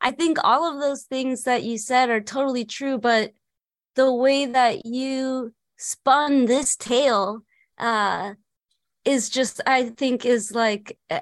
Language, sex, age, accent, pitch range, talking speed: English, female, 20-39, American, 220-260 Hz, 145 wpm